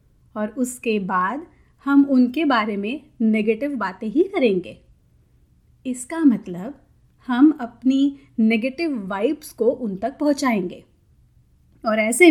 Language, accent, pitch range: Hindi, native, 220-290 Hz